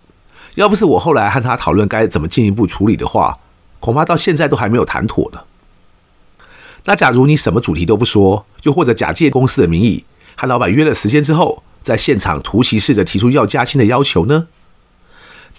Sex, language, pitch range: male, Chinese, 100-155 Hz